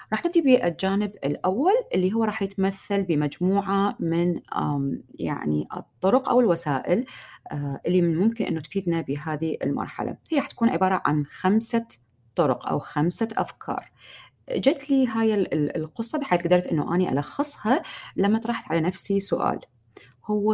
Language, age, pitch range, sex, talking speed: Arabic, 30-49, 165-250 Hz, female, 130 wpm